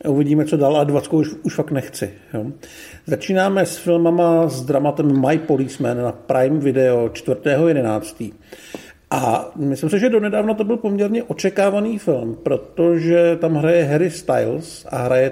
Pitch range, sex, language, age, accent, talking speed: 135-170 Hz, male, Czech, 50-69, native, 140 wpm